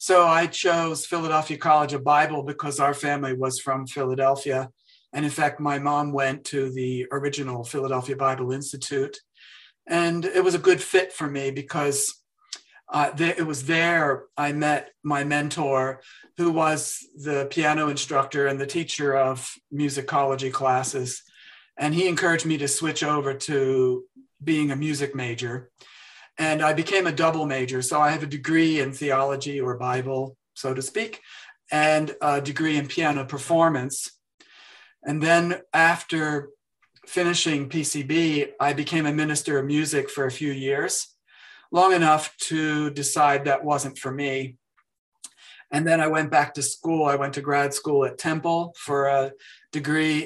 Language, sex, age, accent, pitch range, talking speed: English, male, 50-69, American, 140-155 Hz, 155 wpm